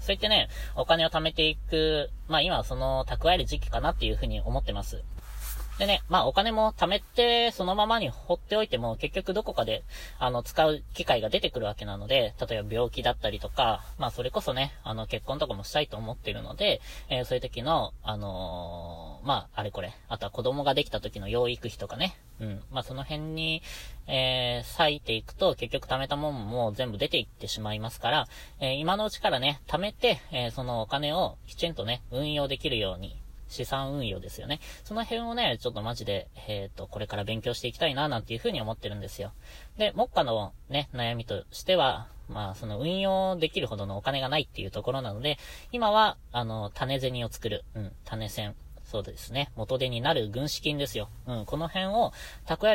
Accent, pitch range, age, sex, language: native, 110-155 Hz, 20-39, female, Japanese